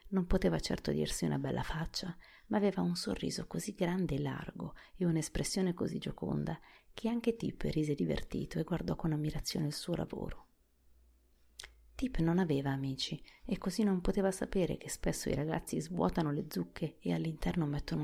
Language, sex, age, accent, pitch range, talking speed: Italian, female, 30-49, native, 140-190 Hz, 165 wpm